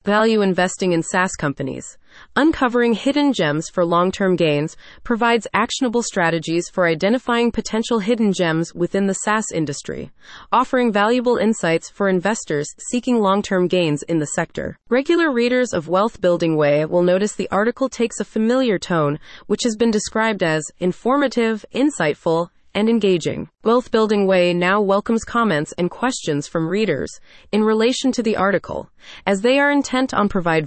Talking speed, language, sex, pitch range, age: 155 wpm, English, female, 175-235 Hz, 30-49